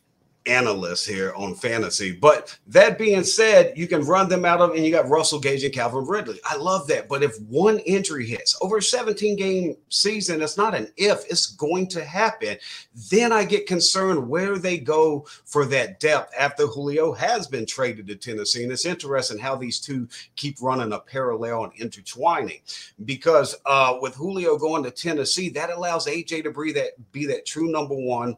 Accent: American